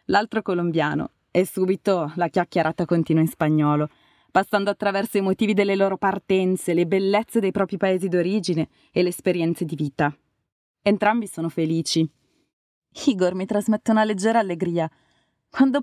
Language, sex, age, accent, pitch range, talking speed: Italian, female, 20-39, native, 160-200 Hz, 140 wpm